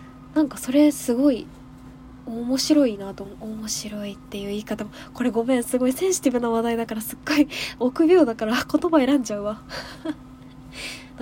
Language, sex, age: Japanese, female, 20-39